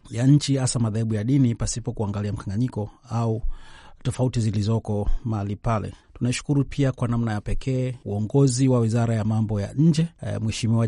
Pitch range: 115-135 Hz